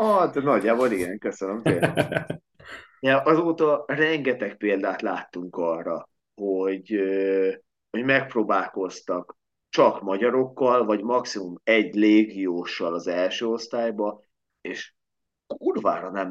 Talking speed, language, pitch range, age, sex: 90 wpm, Hungarian, 95-115 Hz, 30-49, male